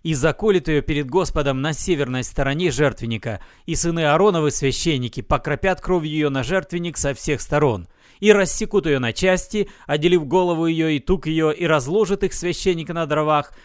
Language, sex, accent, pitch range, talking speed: Russian, male, native, 130-170 Hz, 165 wpm